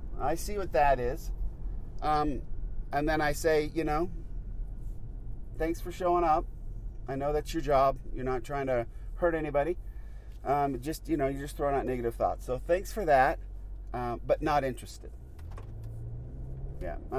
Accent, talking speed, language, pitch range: American, 160 wpm, English, 110-160 Hz